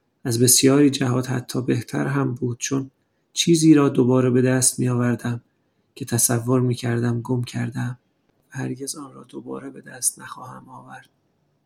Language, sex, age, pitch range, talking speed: Persian, male, 30-49, 120-135 Hz, 150 wpm